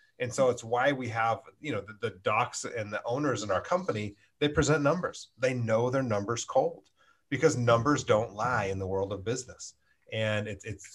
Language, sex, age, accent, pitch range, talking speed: English, male, 30-49, American, 105-135 Hz, 205 wpm